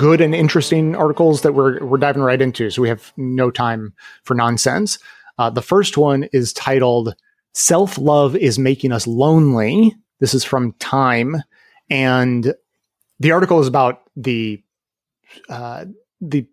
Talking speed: 145 wpm